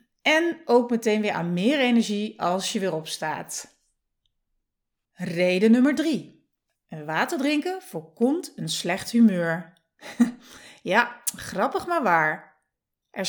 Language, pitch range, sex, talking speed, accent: Dutch, 185-275 Hz, female, 115 wpm, Dutch